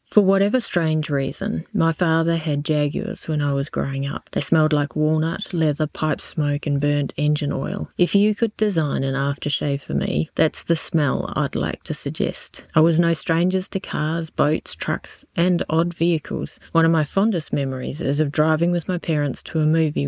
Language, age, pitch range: English, 30-49, 145-170 Hz